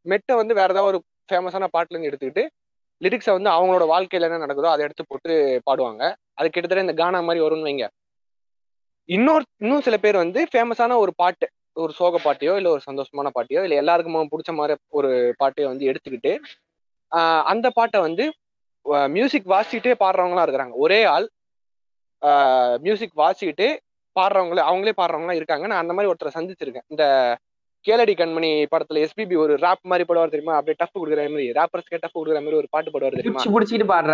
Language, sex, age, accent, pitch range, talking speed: Tamil, male, 20-39, native, 150-200 Hz, 155 wpm